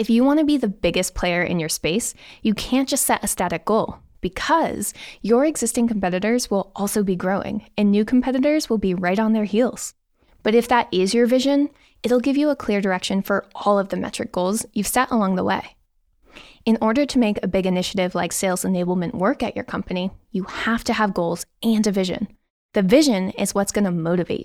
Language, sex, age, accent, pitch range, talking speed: English, female, 20-39, American, 190-240 Hz, 215 wpm